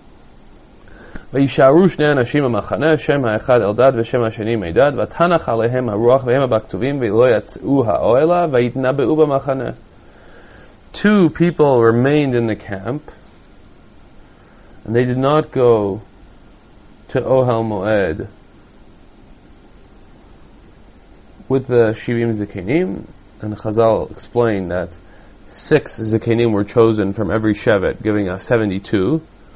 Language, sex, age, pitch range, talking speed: English, male, 30-49, 110-140 Hz, 65 wpm